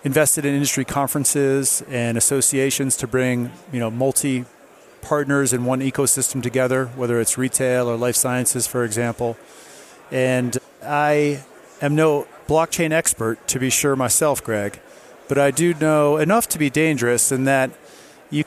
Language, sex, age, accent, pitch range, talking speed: English, male, 40-59, American, 125-145 Hz, 150 wpm